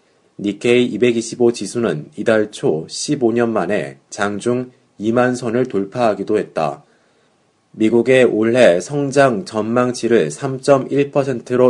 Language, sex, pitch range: Korean, male, 105-125 Hz